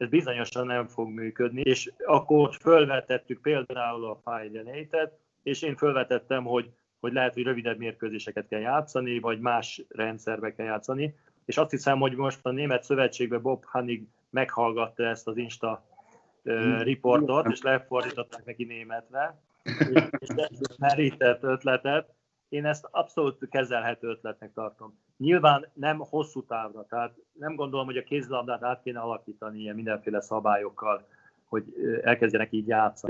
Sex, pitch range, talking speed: male, 110-135 Hz, 140 wpm